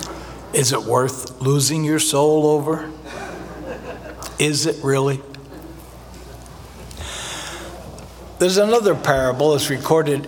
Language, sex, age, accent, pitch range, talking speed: English, male, 60-79, American, 130-170 Hz, 90 wpm